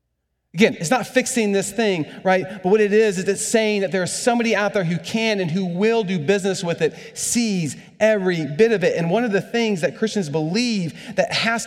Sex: male